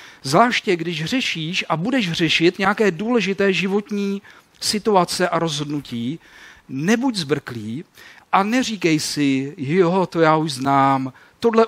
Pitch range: 145-200 Hz